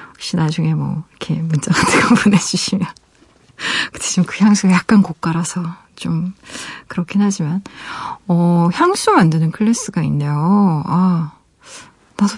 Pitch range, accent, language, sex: 165-225 Hz, native, Korean, female